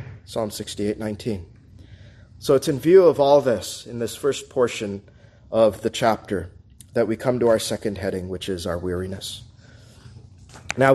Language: English